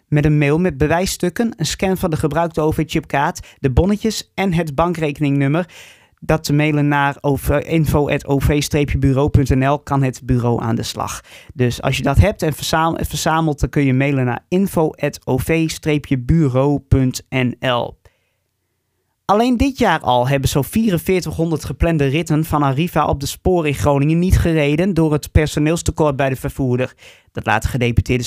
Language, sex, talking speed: Dutch, male, 140 wpm